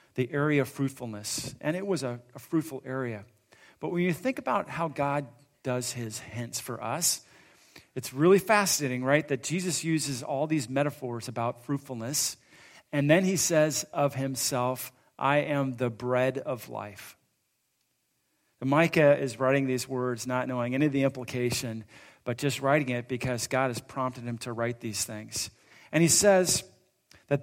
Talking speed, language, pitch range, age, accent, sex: 165 wpm, English, 120-145 Hz, 40-59, American, male